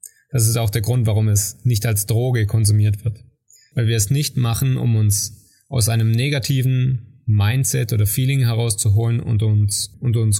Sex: male